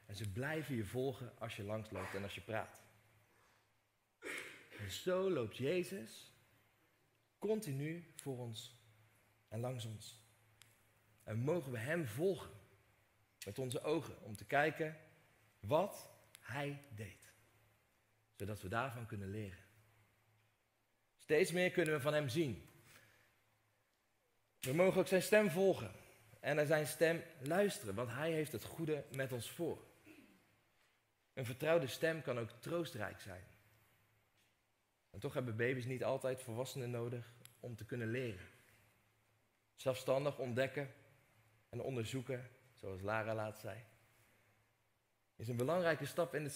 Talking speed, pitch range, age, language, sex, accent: 130 wpm, 110-145 Hz, 40-59, Dutch, male, Dutch